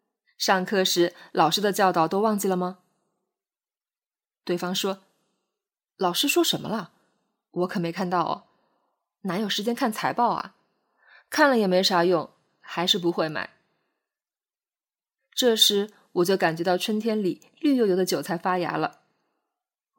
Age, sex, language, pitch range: 20-39, female, Chinese, 175-230 Hz